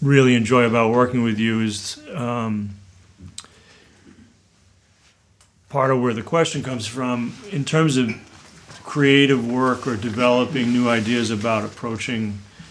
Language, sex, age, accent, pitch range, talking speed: English, male, 40-59, American, 110-125 Hz, 125 wpm